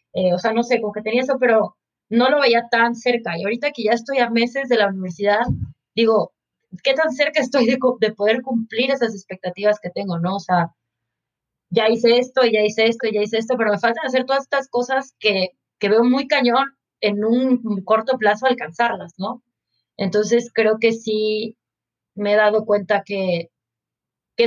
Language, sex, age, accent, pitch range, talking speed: Spanish, female, 20-39, Mexican, 195-235 Hz, 200 wpm